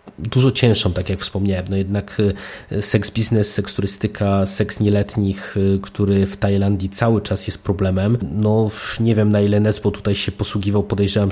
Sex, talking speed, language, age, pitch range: male, 160 wpm, Polish, 20-39, 95-110 Hz